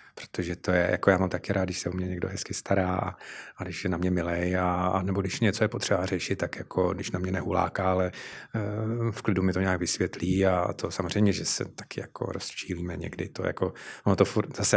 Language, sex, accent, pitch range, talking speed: Czech, male, native, 95-105 Hz, 235 wpm